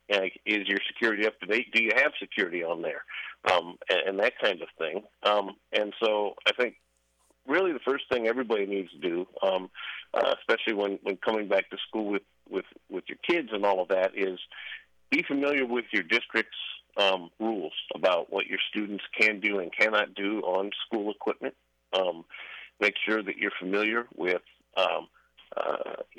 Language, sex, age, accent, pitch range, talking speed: English, male, 50-69, American, 100-115 Hz, 175 wpm